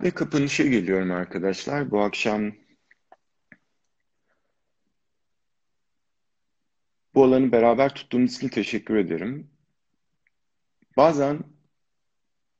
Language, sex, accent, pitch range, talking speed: Turkish, male, native, 90-110 Hz, 65 wpm